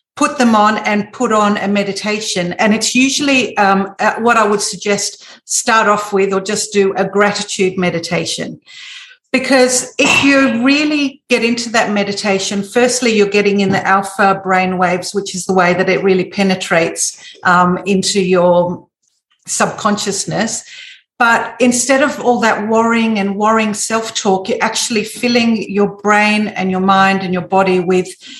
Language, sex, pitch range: English, female, 195-245 Hz